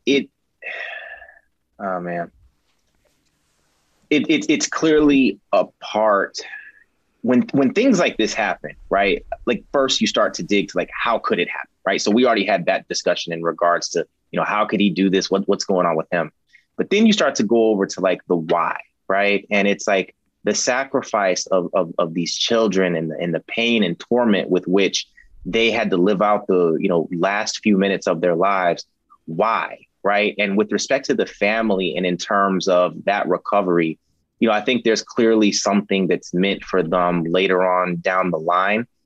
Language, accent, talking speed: English, American, 195 wpm